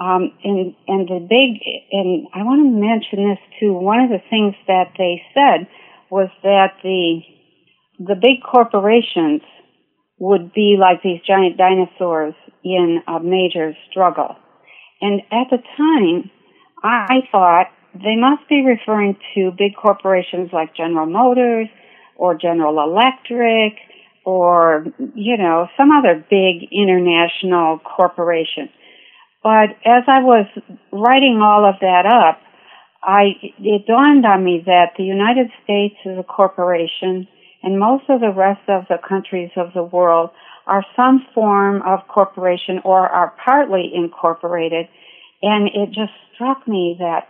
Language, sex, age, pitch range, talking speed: English, female, 60-79, 180-230 Hz, 140 wpm